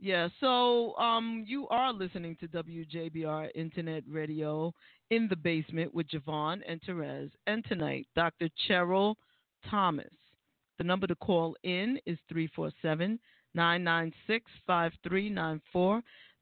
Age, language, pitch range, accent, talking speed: 40-59, English, 165-210 Hz, American, 105 wpm